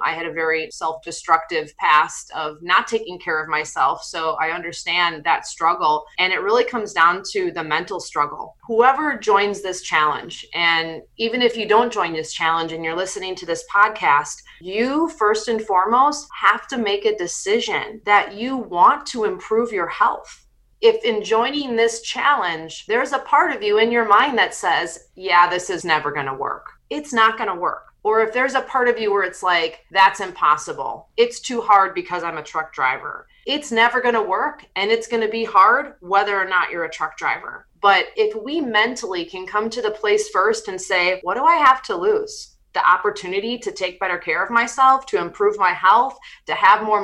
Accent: American